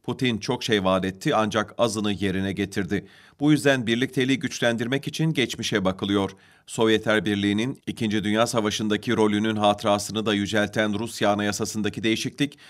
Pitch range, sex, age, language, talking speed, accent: 105-130 Hz, male, 40-59, Turkish, 130 wpm, native